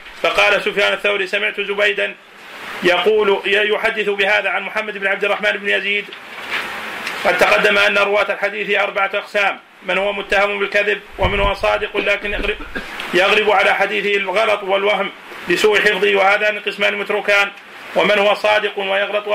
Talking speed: 135 wpm